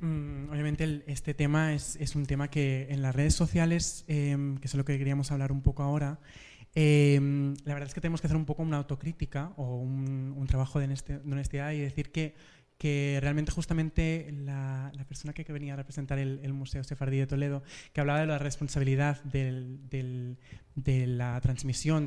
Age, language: 20-39, Spanish